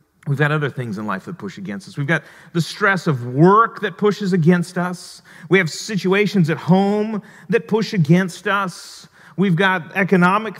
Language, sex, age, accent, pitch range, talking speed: English, male, 40-59, American, 170-215 Hz, 180 wpm